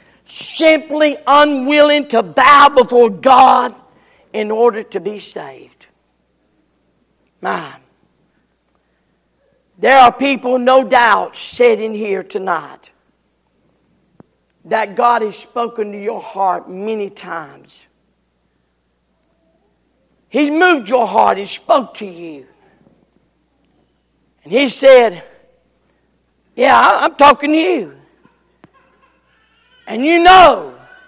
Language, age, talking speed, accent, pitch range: English, 50-69, 95 wpm, American, 215-305 Hz